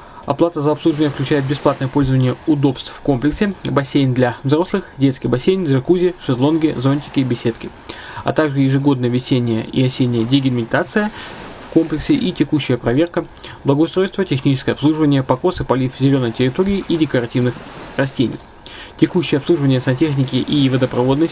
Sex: male